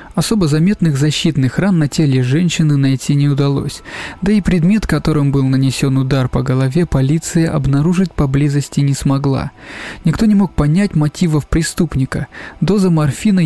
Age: 20-39